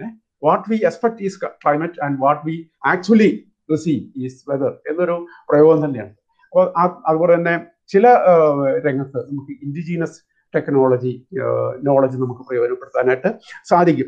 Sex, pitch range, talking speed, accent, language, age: male, 130-180 Hz, 130 wpm, native, Malayalam, 50-69